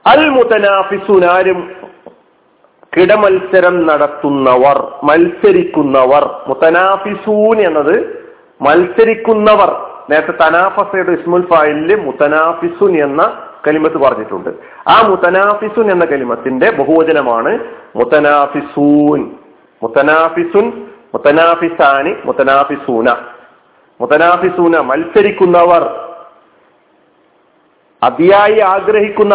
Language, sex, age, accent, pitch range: Malayalam, male, 40-59, native, 155-225 Hz